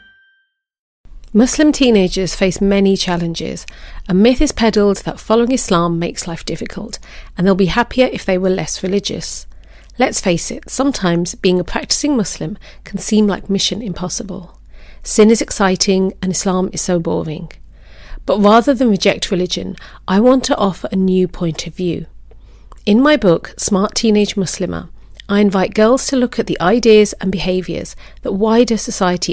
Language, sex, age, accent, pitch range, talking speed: English, female, 40-59, British, 180-225 Hz, 160 wpm